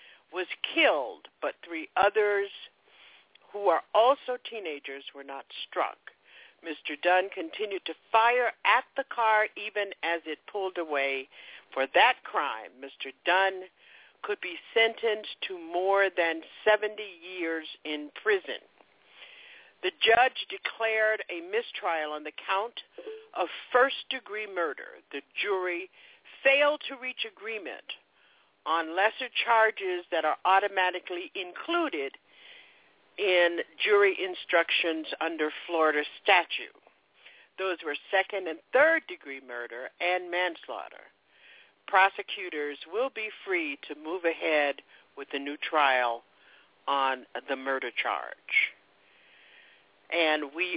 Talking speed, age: 115 wpm, 60-79